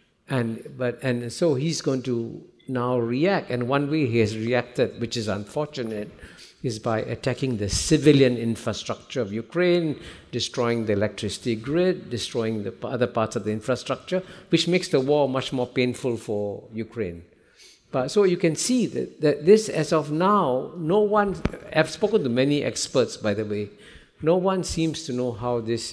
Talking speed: 175 wpm